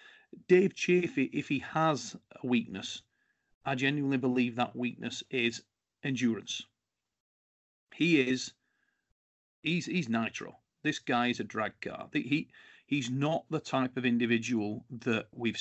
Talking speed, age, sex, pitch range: 130 wpm, 40-59, male, 115-155 Hz